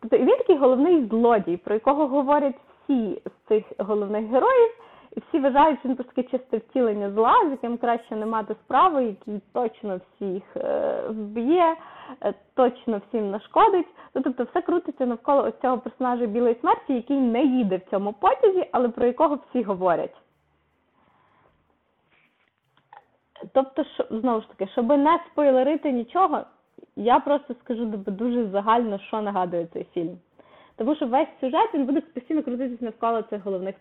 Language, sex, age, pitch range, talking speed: Ukrainian, female, 20-39, 210-275 Hz, 150 wpm